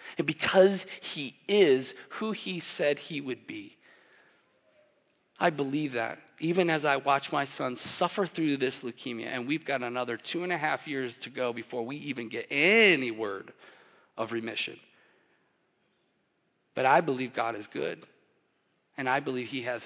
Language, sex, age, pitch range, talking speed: English, male, 40-59, 115-160 Hz, 160 wpm